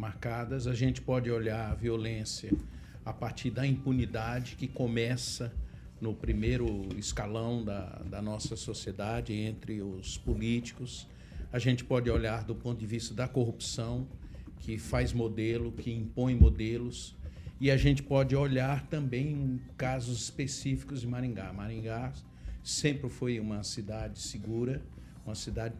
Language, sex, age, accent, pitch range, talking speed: Portuguese, male, 60-79, Brazilian, 110-130 Hz, 135 wpm